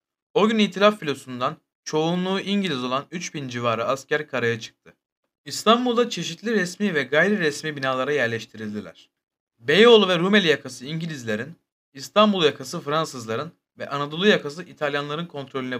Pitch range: 130-180 Hz